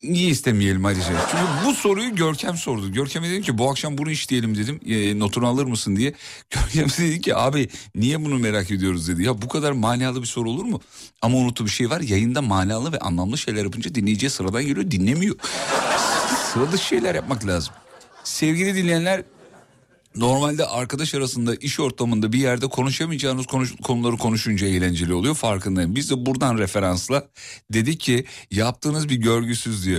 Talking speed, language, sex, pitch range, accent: 165 wpm, Turkish, male, 110-145 Hz, native